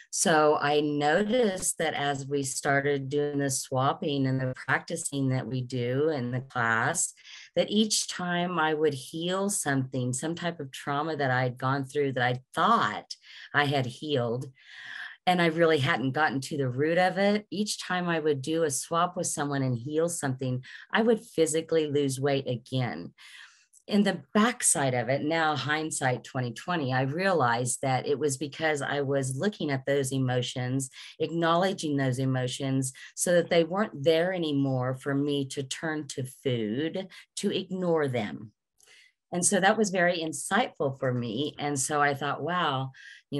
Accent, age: American, 40-59